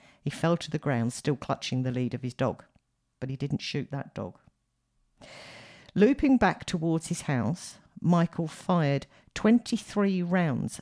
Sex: female